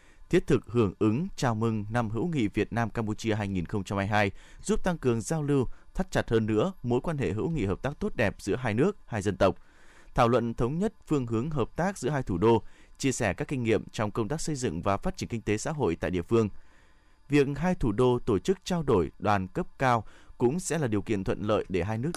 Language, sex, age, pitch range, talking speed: Vietnamese, male, 20-39, 100-135 Hz, 245 wpm